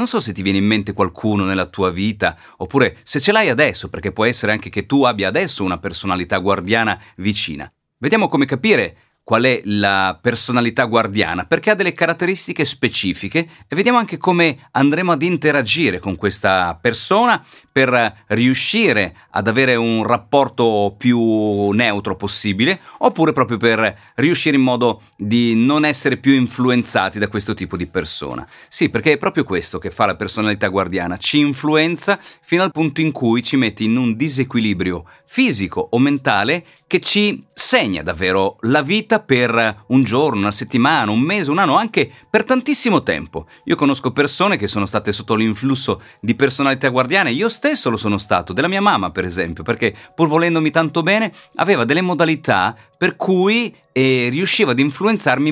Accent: native